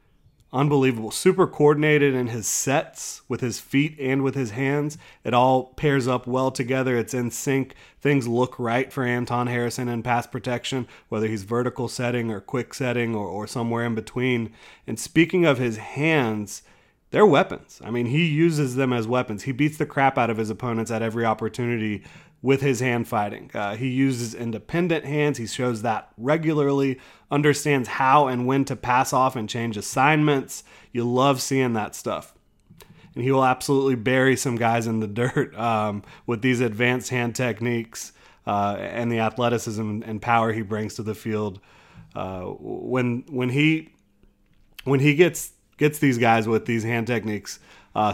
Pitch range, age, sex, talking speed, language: 115-135 Hz, 30-49, male, 170 wpm, English